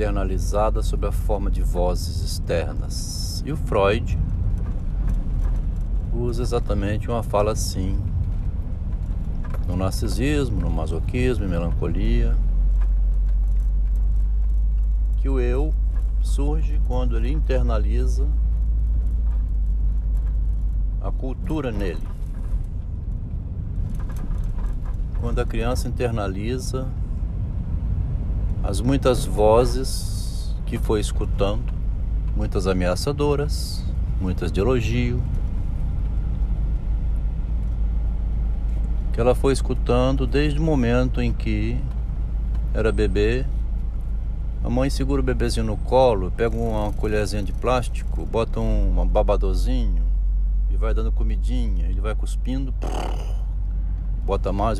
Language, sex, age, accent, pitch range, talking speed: Portuguese, male, 70-89, Brazilian, 80-110 Hz, 90 wpm